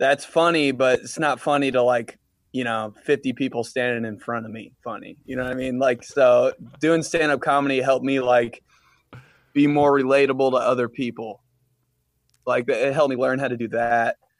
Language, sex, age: English, male, 20-39